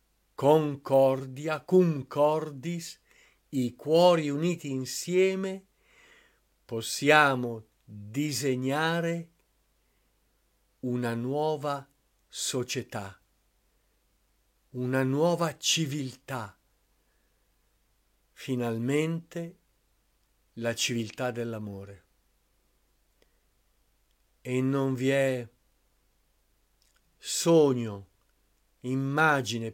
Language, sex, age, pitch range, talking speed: Italian, male, 50-69, 115-150 Hz, 50 wpm